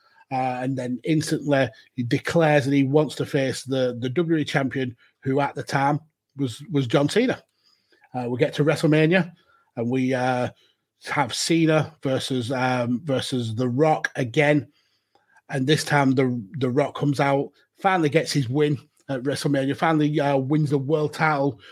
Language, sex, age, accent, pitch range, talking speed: English, male, 30-49, British, 130-155 Hz, 165 wpm